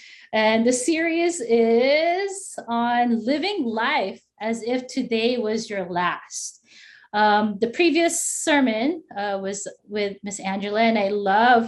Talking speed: 130 wpm